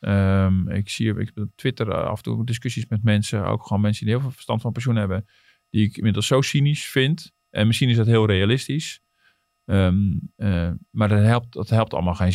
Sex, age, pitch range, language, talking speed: male, 40-59, 95-115 Hz, Dutch, 190 wpm